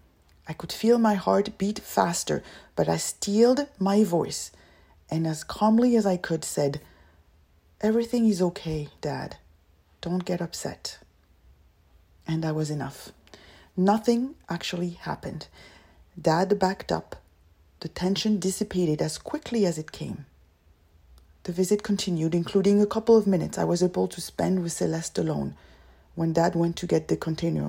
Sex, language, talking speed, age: female, English, 145 wpm, 30-49